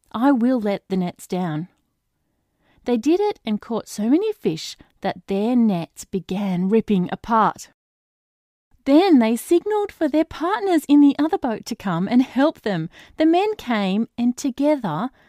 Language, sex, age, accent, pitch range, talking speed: English, female, 30-49, Australian, 185-260 Hz, 155 wpm